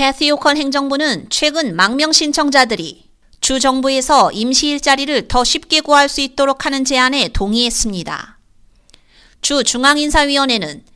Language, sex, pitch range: Korean, female, 250-295 Hz